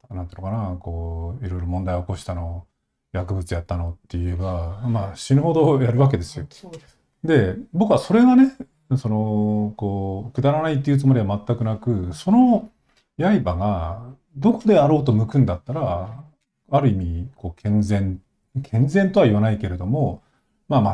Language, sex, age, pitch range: Japanese, male, 40-59, 95-130 Hz